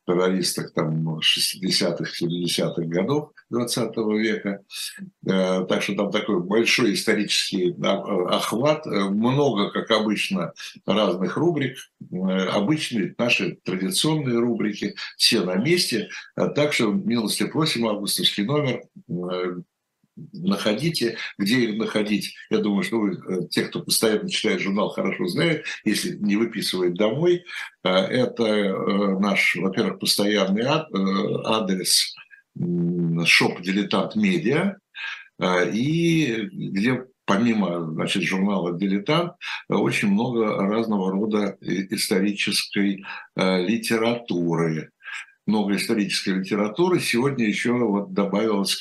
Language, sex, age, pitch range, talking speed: Russian, male, 60-79, 95-125 Hz, 90 wpm